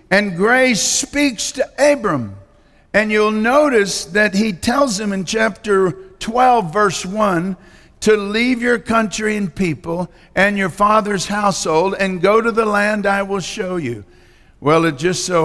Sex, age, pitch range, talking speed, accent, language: male, 50-69, 175-205 Hz, 155 wpm, American, English